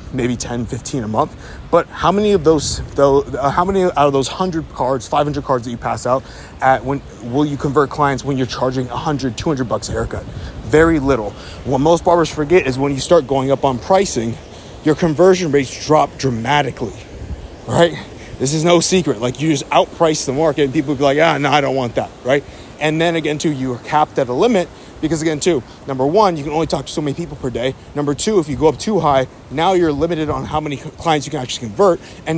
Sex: male